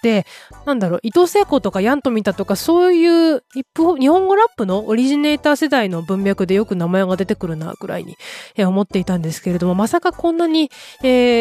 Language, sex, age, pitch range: Japanese, female, 20-39, 195-285 Hz